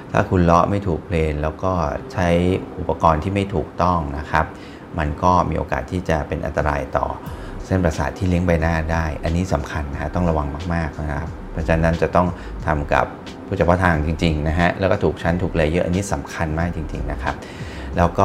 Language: Thai